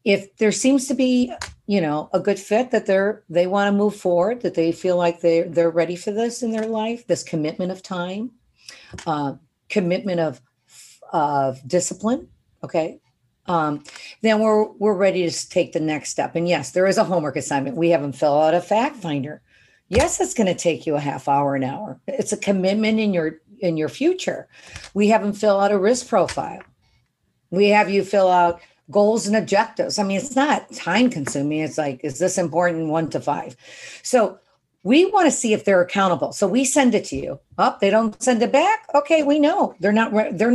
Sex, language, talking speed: female, English, 205 wpm